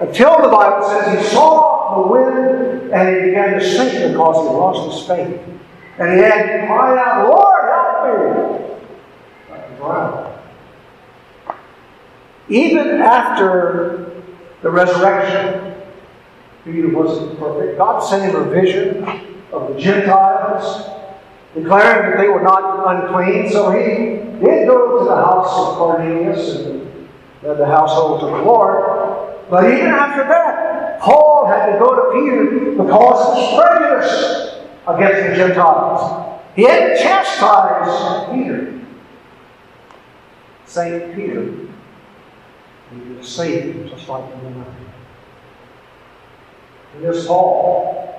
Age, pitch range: 50-69, 170-230 Hz